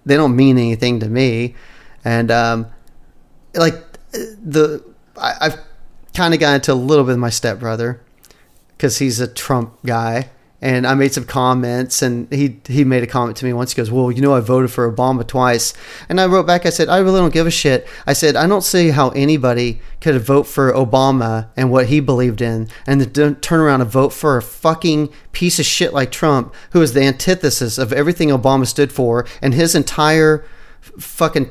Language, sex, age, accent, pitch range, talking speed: English, male, 30-49, American, 120-145 Hz, 200 wpm